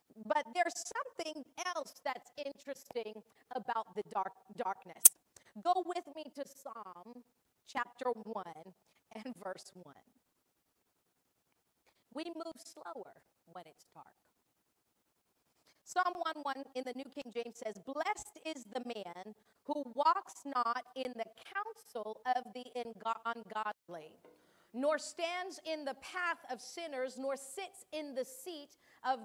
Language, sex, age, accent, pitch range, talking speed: English, female, 40-59, American, 245-335 Hz, 125 wpm